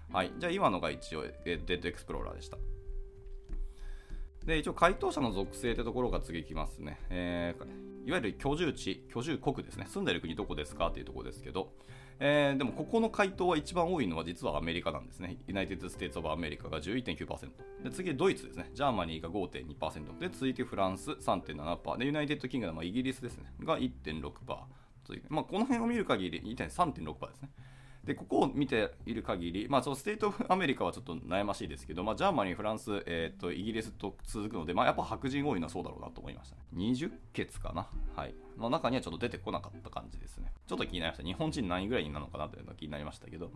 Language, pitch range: Japanese, 75-130 Hz